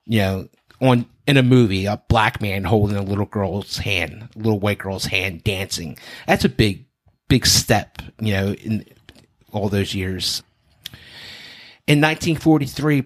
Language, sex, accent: English, male, American